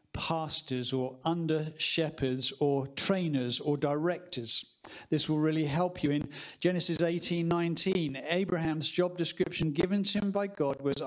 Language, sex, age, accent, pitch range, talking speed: English, male, 50-69, British, 145-175 Hz, 140 wpm